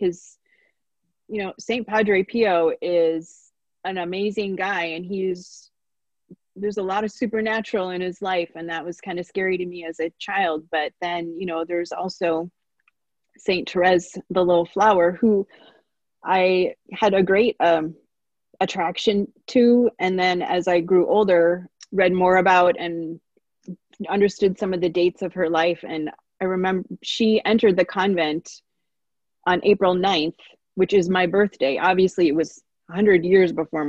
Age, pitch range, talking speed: 30-49, 170-195 Hz, 155 wpm